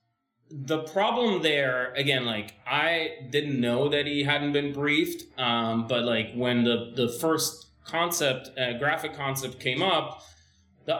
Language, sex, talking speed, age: English, male, 145 wpm, 20-39